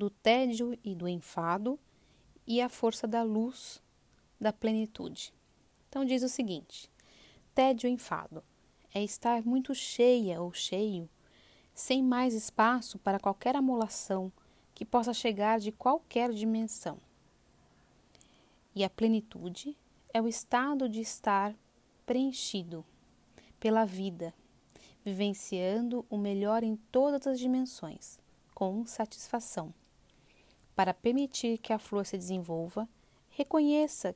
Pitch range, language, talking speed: 200-245 Hz, Portuguese, 115 wpm